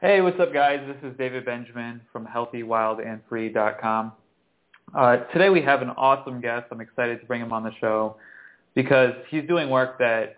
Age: 20-39